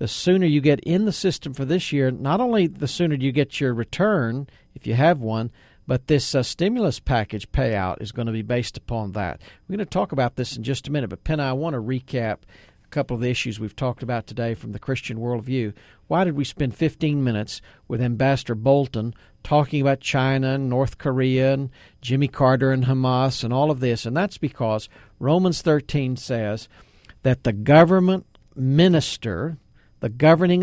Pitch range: 120-165 Hz